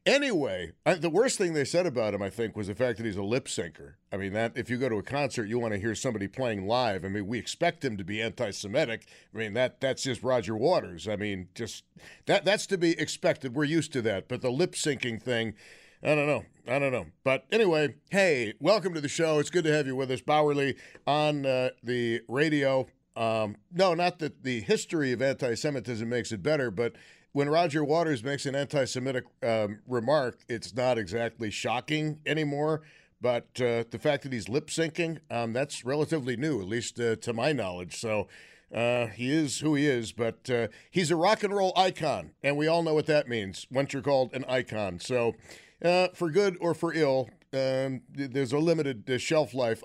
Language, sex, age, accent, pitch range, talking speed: English, male, 50-69, American, 115-155 Hz, 205 wpm